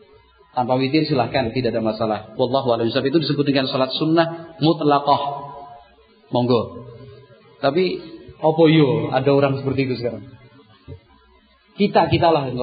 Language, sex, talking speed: Indonesian, male, 120 wpm